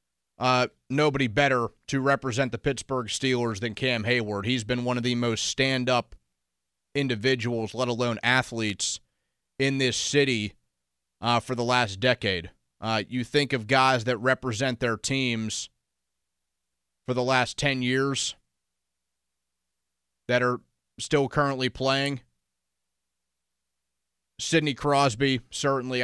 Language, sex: English, male